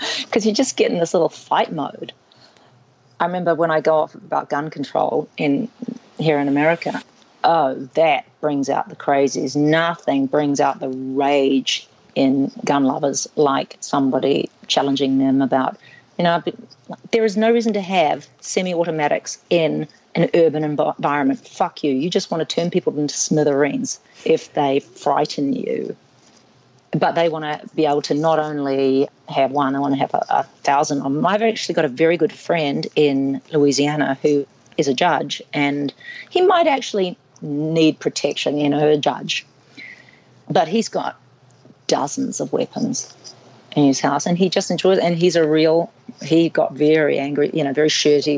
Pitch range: 140-180 Hz